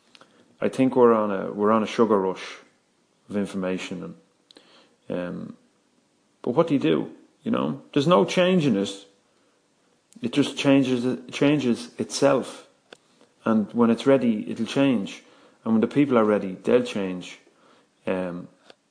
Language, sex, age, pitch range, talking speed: English, male, 30-49, 95-120 Hz, 150 wpm